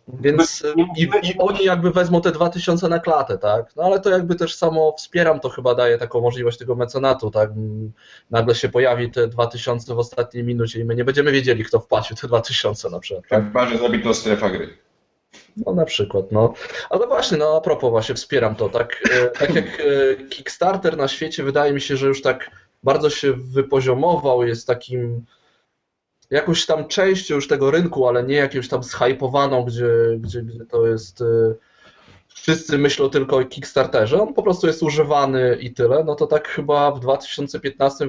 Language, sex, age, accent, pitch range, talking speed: Polish, male, 20-39, native, 120-145 Hz, 185 wpm